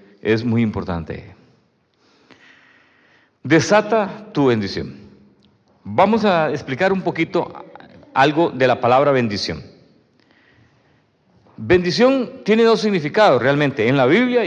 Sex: male